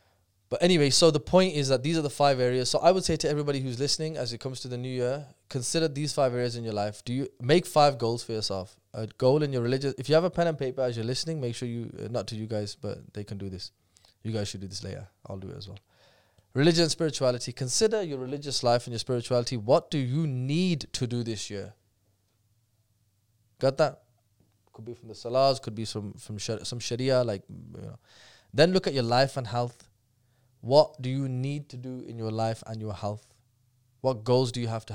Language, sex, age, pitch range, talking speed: English, male, 20-39, 110-130 Hz, 240 wpm